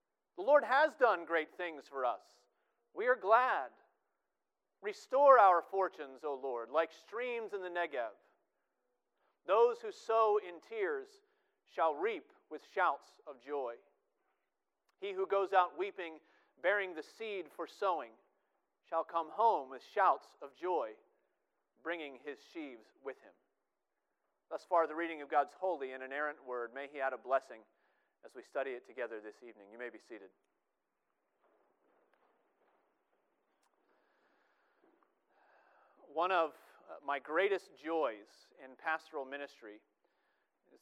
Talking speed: 130 wpm